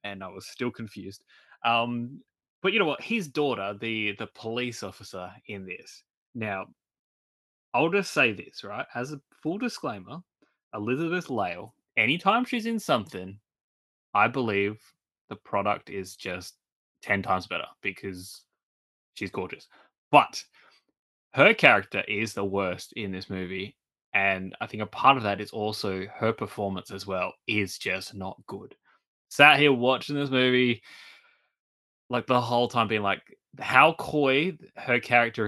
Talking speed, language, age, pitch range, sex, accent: 145 wpm, English, 20-39, 100-125 Hz, male, Australian